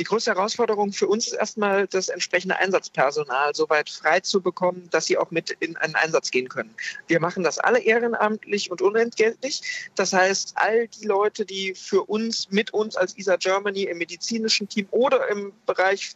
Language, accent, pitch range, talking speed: German, German, 175-225 Hz, 185 wpm